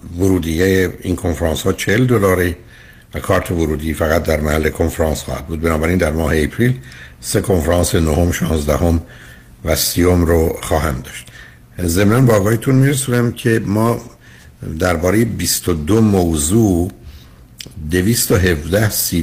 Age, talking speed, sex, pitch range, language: 60-79, 130 wpm, male, 80-95 Hz, Persian